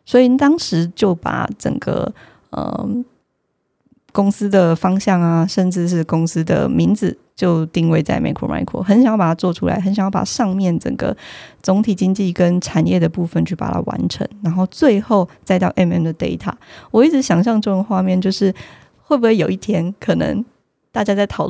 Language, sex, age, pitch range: Chinese, female, 20-39, 170-205 Hz